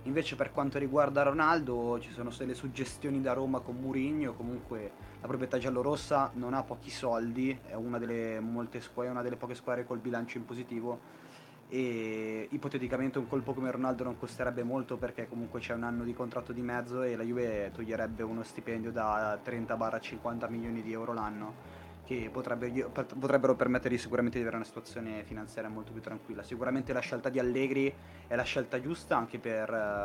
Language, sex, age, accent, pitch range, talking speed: Italian, male, 20-39, native, 110-130 Hz, 170 wpm